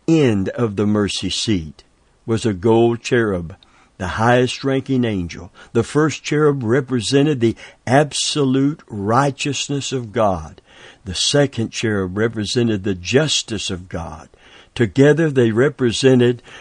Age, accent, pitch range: 60-79, American, 100-135 Hz